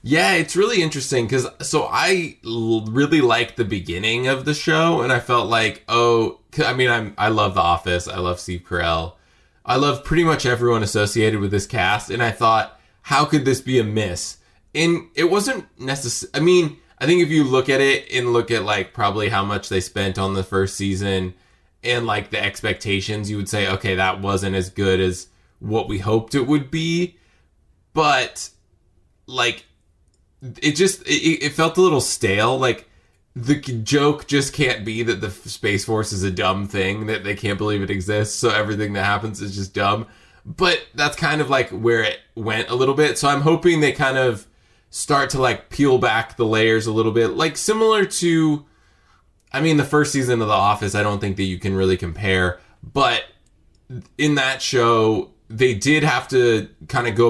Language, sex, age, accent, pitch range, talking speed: English, male, 20-39, American, 95-135 Hz, 195 wpm